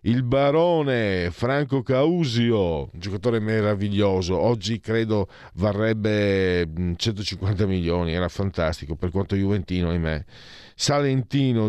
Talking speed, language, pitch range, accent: 100 wpm, Italian, 100-140 Hz, native